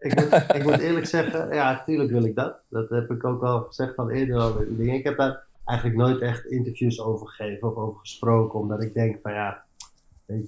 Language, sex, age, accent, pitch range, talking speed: Dutch, male, 30-49, Dutch, 115-140 Hz, 225 wpm